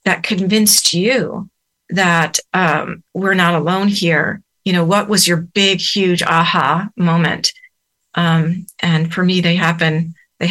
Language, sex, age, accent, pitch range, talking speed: English, female, 40-59, American, 170-200 Hz, 145 wpm